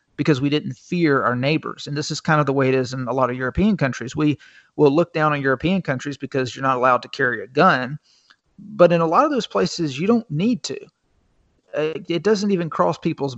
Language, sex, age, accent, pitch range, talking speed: English, male, 40-59, American, 135-175 Hz, 235 wpm